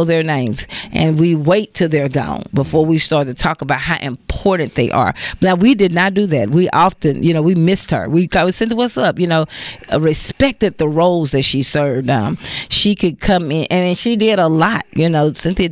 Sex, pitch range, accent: female, 145-175 Hz, American